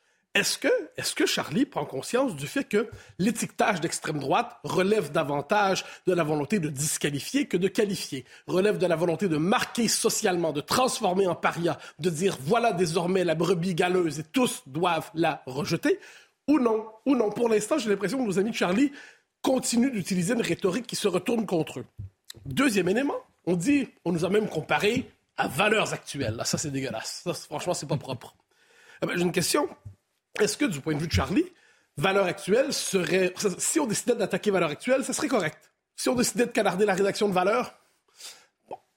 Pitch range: 170-230 Hz